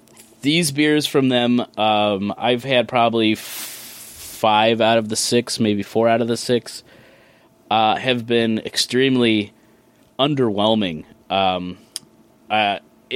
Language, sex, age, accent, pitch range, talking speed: English, male, 20-39, American, 105-125 Hz, 125 wpm